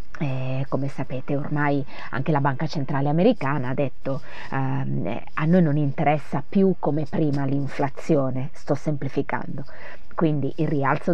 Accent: native